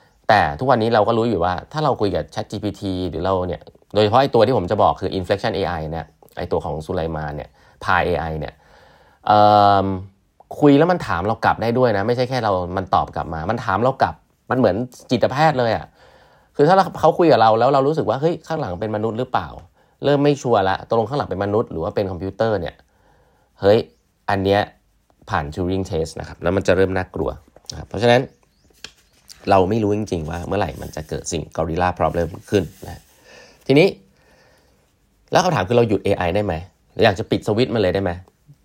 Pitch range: 85-115 Hz